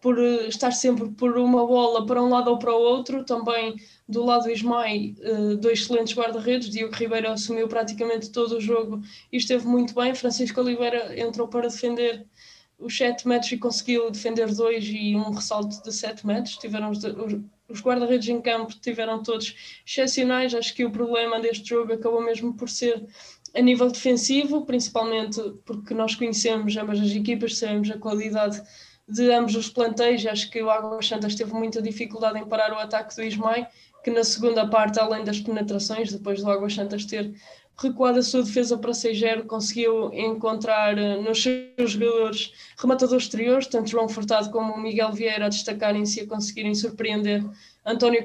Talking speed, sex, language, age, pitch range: 170 wpm, female, Portuguese, 20-39, 215-240 Hz